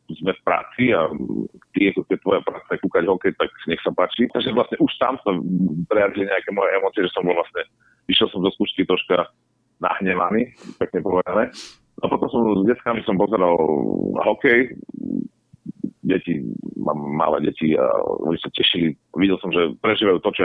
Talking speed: 175 wpm